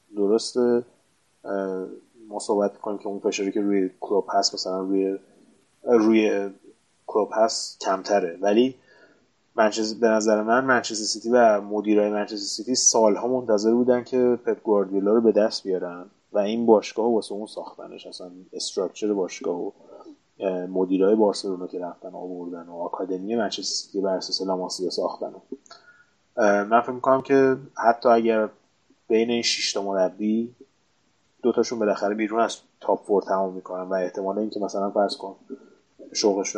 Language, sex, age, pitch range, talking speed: Persian, male, 20-39, 95-120 Hz, 135 wpm